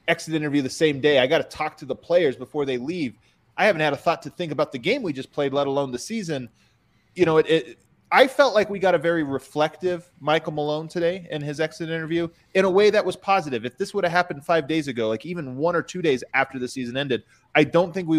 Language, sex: English, male